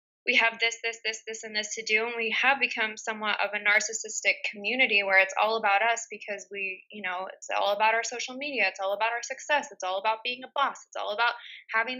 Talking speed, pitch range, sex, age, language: 245 wpm, 205-230 Hz, female, 20-39, English